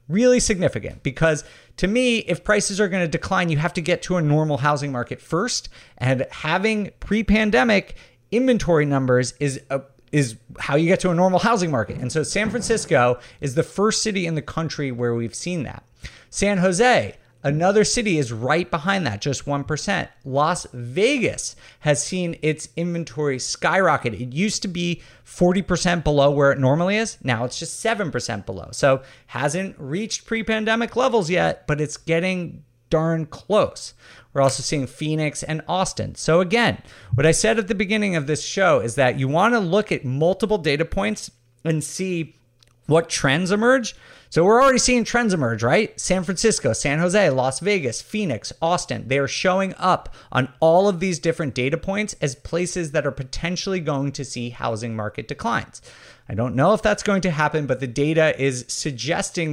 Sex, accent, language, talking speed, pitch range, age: male, American, English, 180 wpm, 135-190 Hz, 30-49